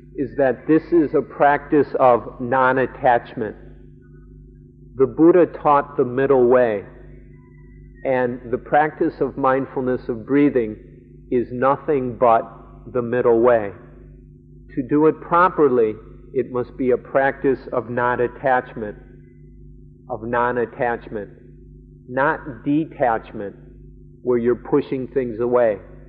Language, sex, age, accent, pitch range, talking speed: English, male, 50-69, American, 120-135 Hz, 110 wpm